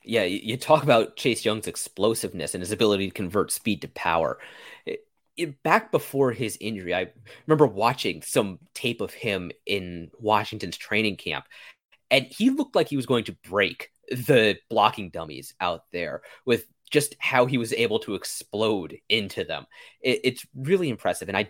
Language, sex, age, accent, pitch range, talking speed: English, male, 30-49, American, 100-150 Hz, 175 wpm